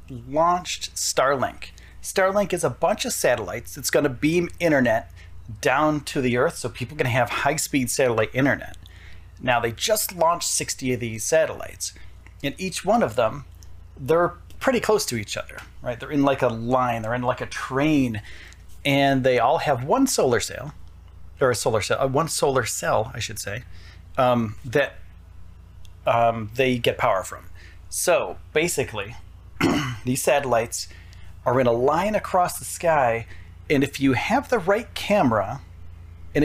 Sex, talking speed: male, 160 wpm